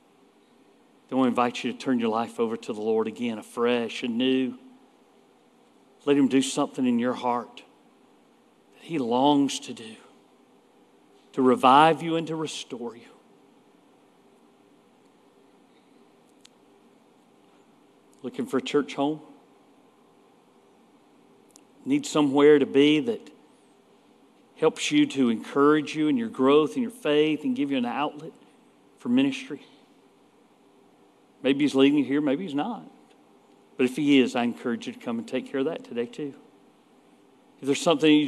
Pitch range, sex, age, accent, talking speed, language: 130-205 Hz, male, 50-69, American, 145 wpm, English